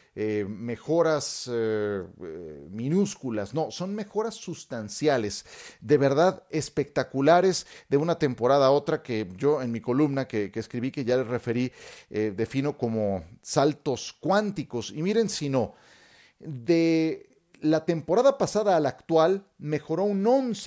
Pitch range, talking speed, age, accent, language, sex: 130-190 Hz, 135 wpm, 40-59, Mexican, Spanish, male